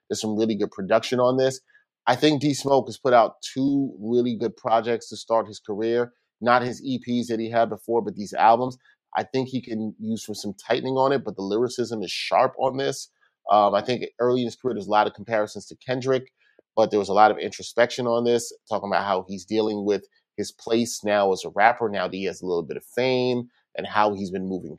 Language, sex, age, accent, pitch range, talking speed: English, male, 30-49, American, 105-125 Hz, 240 wpm